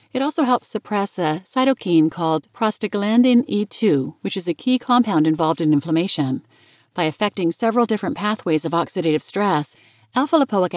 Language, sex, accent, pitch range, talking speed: English, female, American, 160-215 Hz, 145 wpm